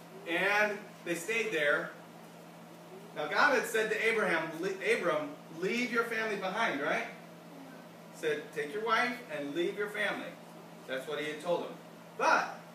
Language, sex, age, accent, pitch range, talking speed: English, male, 40-59, American, 165-225 Hz, 150 wpm